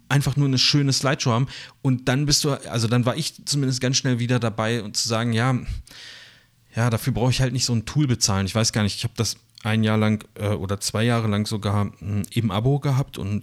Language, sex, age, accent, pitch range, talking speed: German, male, 30-49, German, 105-130 Hz, 235 wpm